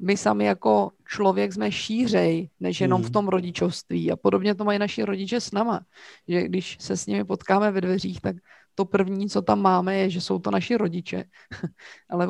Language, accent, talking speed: Czech, native, 195 wpm